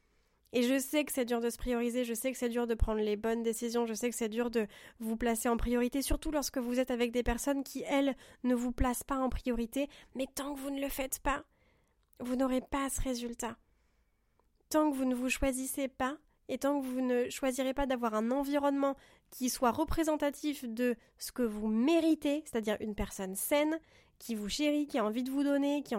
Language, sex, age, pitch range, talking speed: French, female, 20-39, 235-280 Hz, 225 wpm